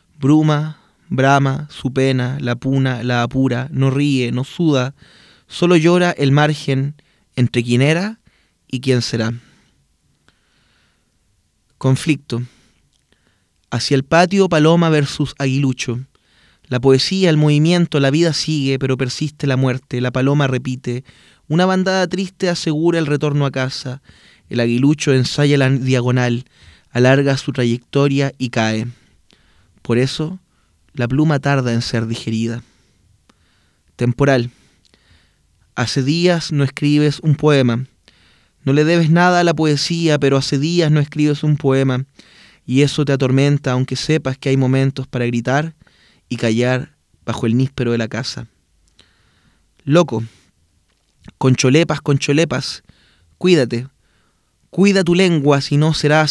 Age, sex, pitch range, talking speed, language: 20-39, male, 120-150 Hz, 130 wpm, Spanish